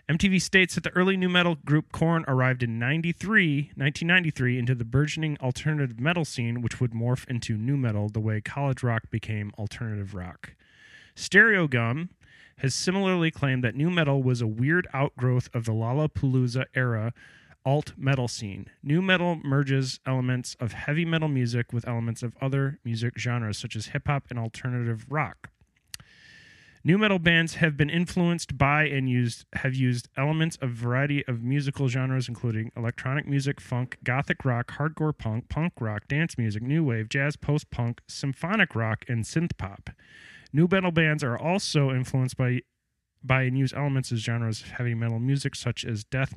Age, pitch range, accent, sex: 30-49, 120-150 Hz, American, male